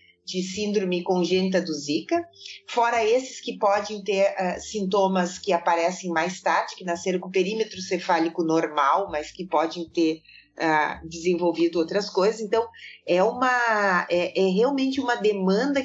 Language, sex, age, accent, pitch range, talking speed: Portuguese, female, 40-59, Brazilian, 175-240 Hz, 135 wpm